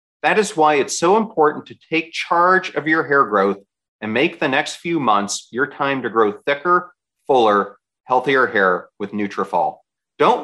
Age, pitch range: 40-59, 110-160 Hz